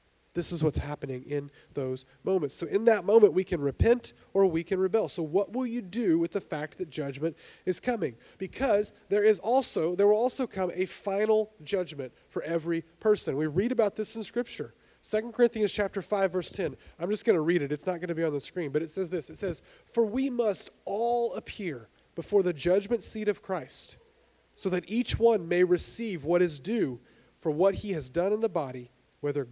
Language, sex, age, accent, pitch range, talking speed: English, male, 30-49, American, 155-205 Hz, 215 wpm